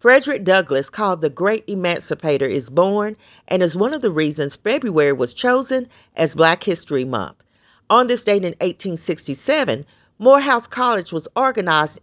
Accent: American